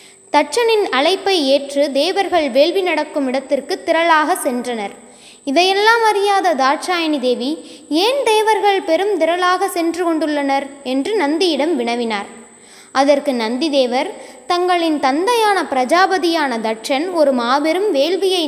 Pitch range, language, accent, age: 275-375 Hz, Tamil, native, 20-39